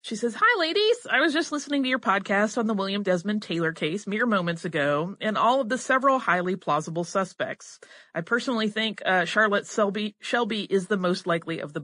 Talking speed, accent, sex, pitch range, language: 210 wpm, American, female, 175-245 Hz, English